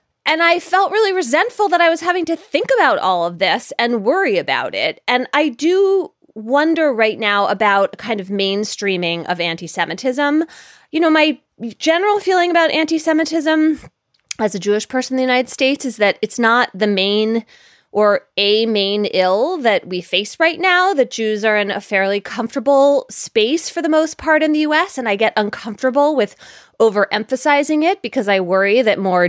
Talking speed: 180 wpm